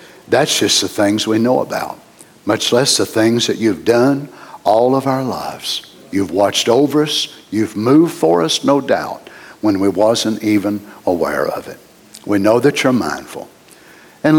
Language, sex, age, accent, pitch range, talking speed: English, male, 60-79, American, 110-140 Hz, 170 wpm